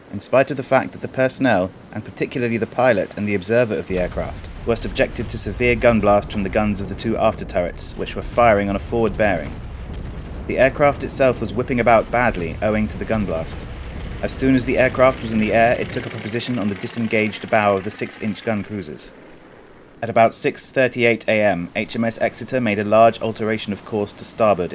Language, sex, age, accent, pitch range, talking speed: English, male, 30-49, British, 100-120 Hz, 210 wpm